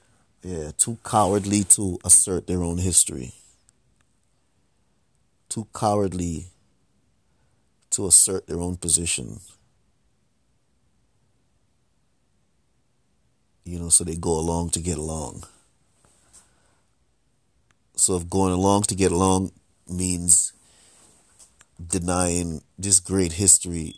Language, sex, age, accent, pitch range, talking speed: English, male, 30-49, American, 85-100 Hz, 90 wpm